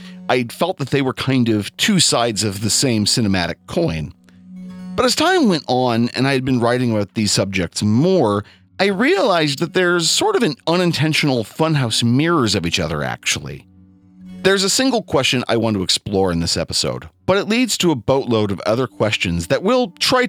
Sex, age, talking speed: male, 40-59, 190 wpm